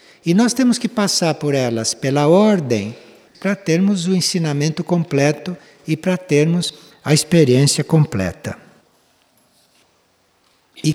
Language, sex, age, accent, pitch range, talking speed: Portuguese, male, 60-79, Brazilian, 130-175 Hz, 115 wpm